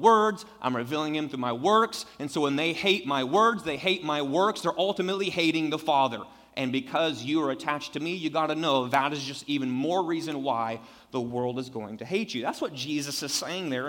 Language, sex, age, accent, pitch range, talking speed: English, male, 30-49, American, 145-185 Hz, 235 wpm